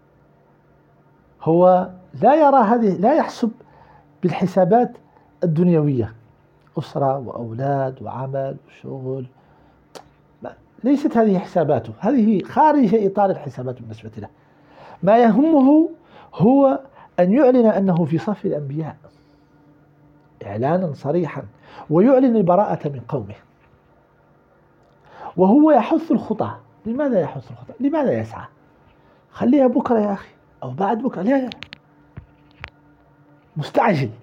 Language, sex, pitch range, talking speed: Arabic, male, 145-240 Hz, 95 wpm